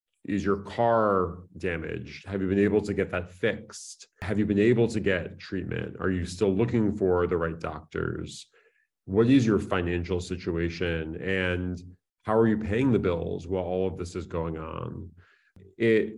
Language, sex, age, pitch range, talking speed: English, male, 40-59, 95-115 Hz, 175 wpm